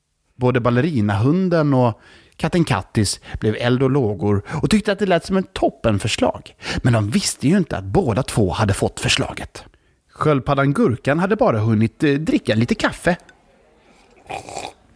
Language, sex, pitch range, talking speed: Swedish, male, 120-200 Hz, 145 wpm